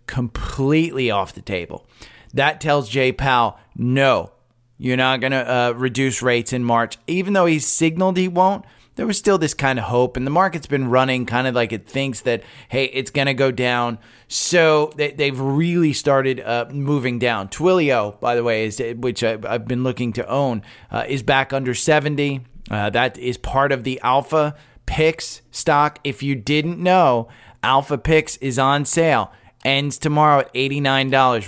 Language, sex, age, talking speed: English, male, 30-49, 185 wpm